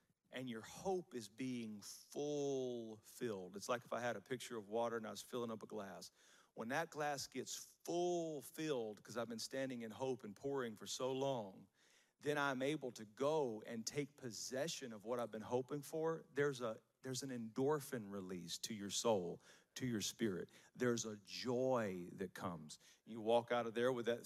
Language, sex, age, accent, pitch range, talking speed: English, male, 40-59, American, 115-145 Hz, 195 wpm